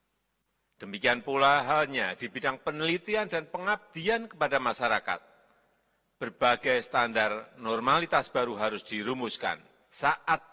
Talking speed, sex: 95 wpm, male